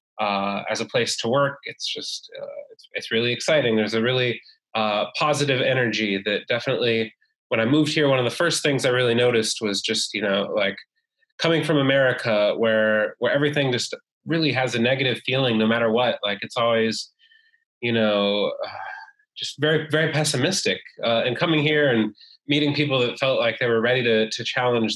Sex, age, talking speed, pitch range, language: male, 20-39, 190 wpm, 115-150 Hz, English